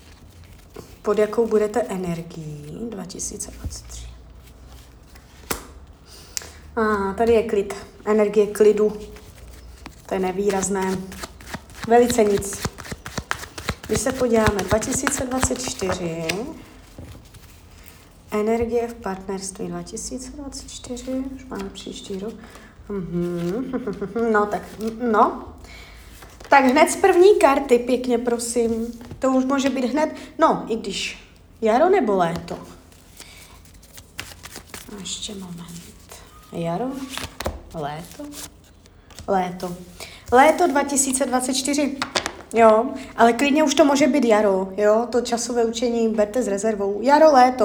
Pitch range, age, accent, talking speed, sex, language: 170-250 Hz, 20-39, native, 90 wpm, female, Czech